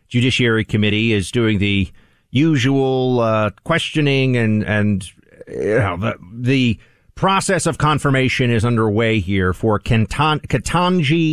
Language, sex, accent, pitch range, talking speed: English, male, American, 110-150 Hz, 105 wpm